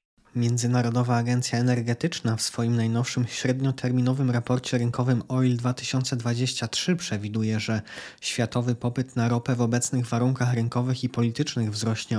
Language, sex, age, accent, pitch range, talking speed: Polish, male, 20-39, native, 115-125 Hz, 120 wpm